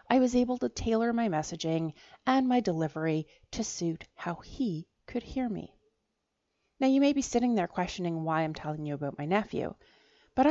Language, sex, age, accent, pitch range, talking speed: English, female, 30-49, American, 165-250 Hz, 185 wpm